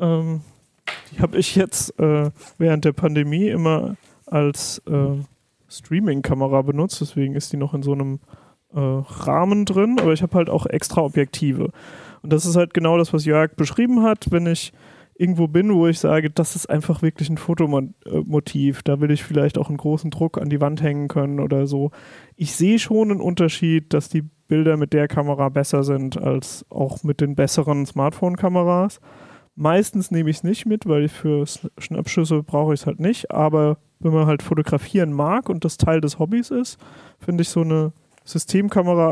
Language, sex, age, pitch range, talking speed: German, male, 30-49, 145-170 Hz, 185 wpm